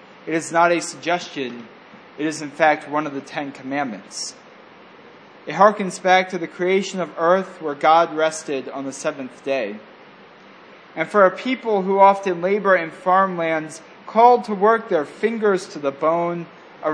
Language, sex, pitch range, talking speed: English, male, 155-195 Hz, 165 wpm